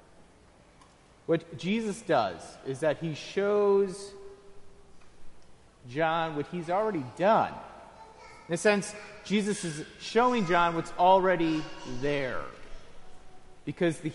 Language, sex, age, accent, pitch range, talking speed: English, male, 30-49, American, 135-190 Hz, 100 wpm